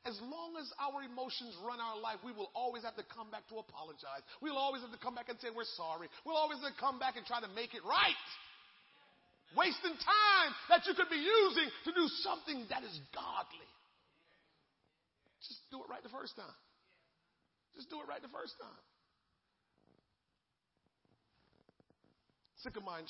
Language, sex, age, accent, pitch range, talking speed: English, male, 40-59, American, 185-300 Hz, 175 wpm